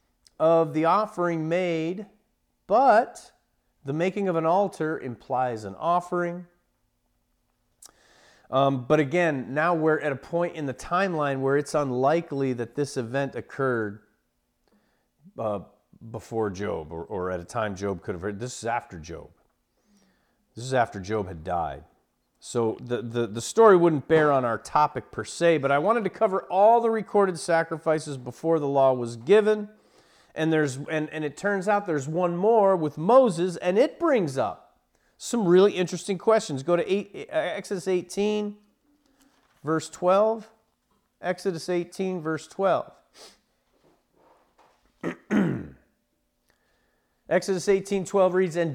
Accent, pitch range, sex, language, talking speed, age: American, 135-195 Hz, male, English, 140 wpm, 40-59